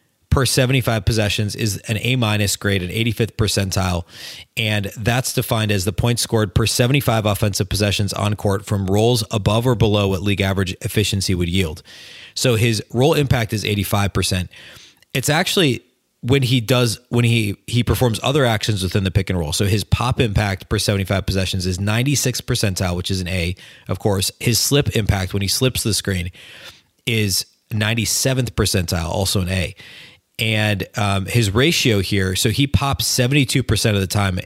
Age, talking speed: 30-49, 170 wpm